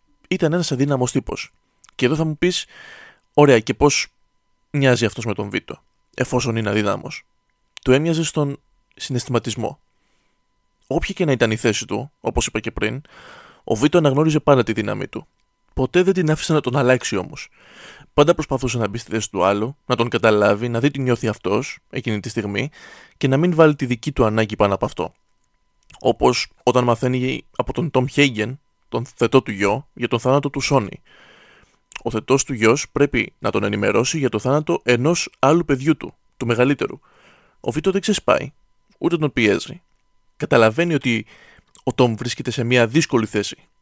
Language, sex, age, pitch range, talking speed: Greek, male, 20-39, 115-145 Hz, 175 wpm